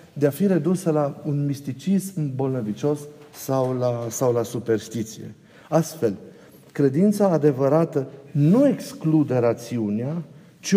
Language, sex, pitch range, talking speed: Romanian, male, 125-165 Hz, 110 wpm